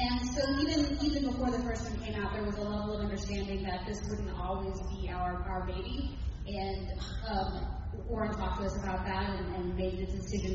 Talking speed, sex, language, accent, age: 210 wpm, female, English, American, 30-49